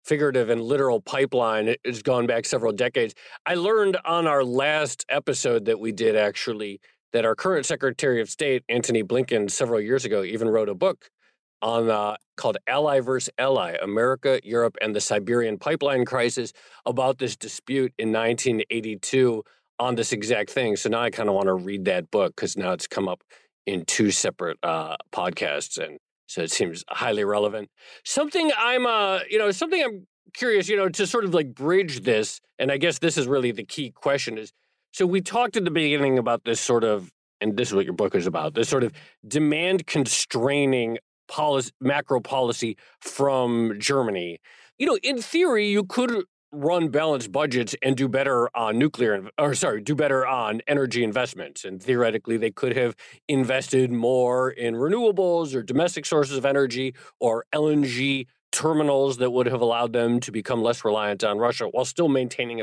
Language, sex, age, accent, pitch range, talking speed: English, male, 40-59, American, 115-150 Hz, 180 wpm